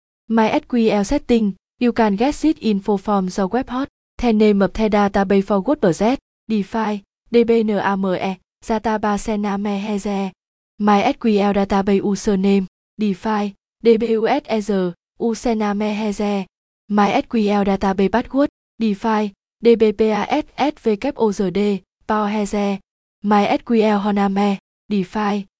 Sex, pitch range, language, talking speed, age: female, 195-225 Hz, Vietnamese, 90 wpm, 20-39